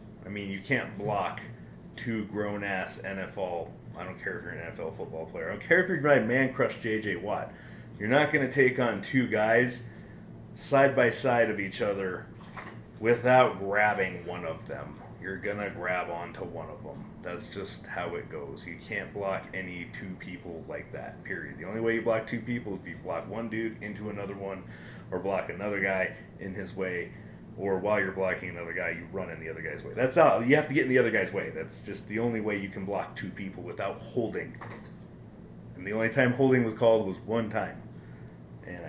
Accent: American